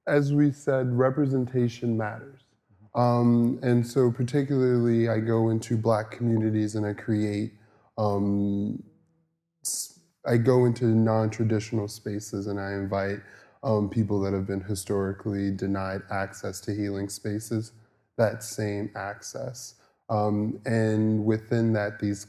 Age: 20-39